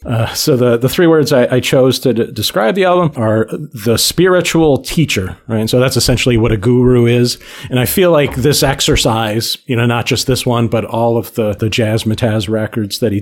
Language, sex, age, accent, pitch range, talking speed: English, male, 40-59, American, 115-130 Hz, 220 wpm